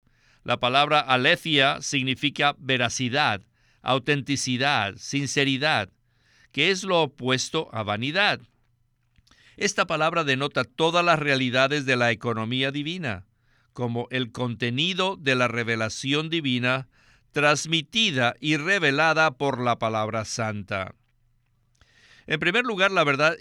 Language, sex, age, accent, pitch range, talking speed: Spanish, male, 50-69, Mexican, 120-150 Hz, 110 wpm